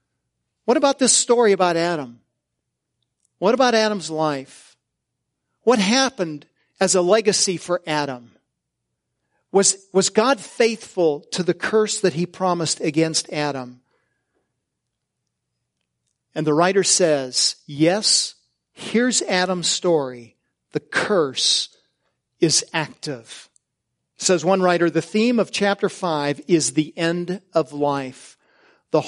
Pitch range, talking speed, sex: 145-195 Hz, 115 wpm, male